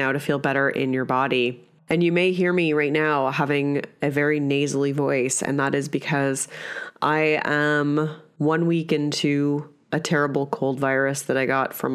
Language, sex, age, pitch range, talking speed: English, female, 30-49, 140-160 Hz, 175 wpm